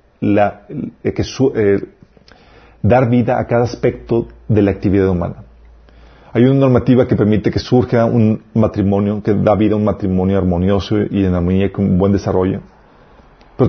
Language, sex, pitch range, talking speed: Spanish, male, 100-130 Hz, 160 wpm